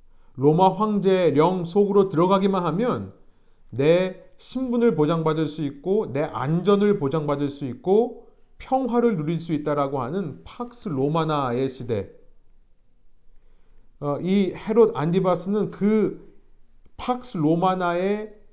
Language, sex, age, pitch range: Korean, male, 40-59, 135-195 Hz